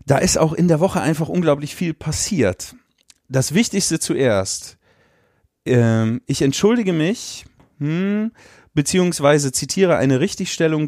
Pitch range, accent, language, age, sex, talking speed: 120-160 Hz, German, German, 30-49, male, 120 wpm